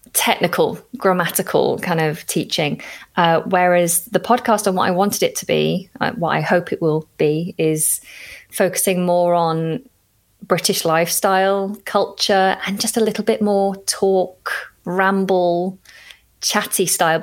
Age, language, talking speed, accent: 20-39, English, 140 wpm, British